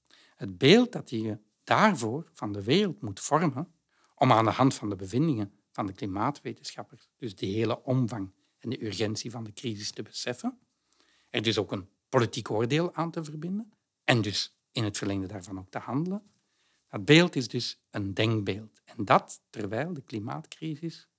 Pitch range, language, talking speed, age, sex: 115-155 Hz, Dutch, 175 wpm, 60-79, male